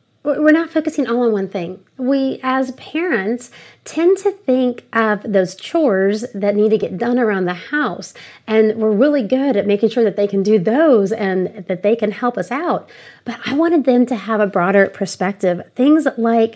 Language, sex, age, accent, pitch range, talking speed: English, female, 30-49, American, 205-270 Hz, 195 wpm